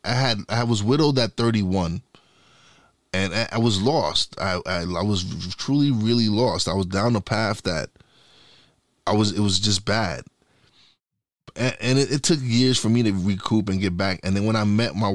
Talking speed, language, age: 200 wpm, English, 20-39